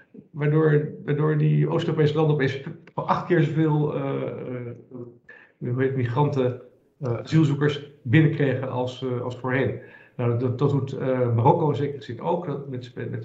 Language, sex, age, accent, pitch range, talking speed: Dutch, male, 50-69, Dutch, 120-145 Hz, 135 wpm